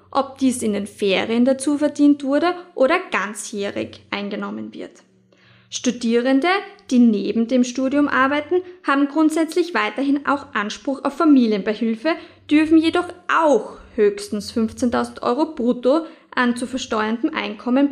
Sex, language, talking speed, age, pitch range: female, German, 120 wpm, 20-39, 215-300 Hz